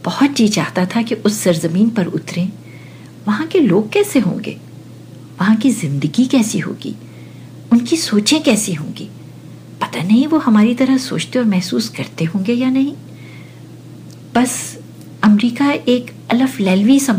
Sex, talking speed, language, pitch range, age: female, 145 wpm, English, 175-245 Hz, 50-69